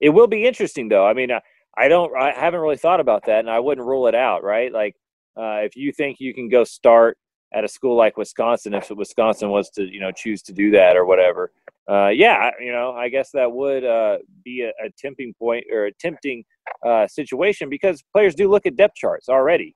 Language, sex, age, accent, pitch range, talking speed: English, male, 30-49, American, 110-145 Hz, 230 wpm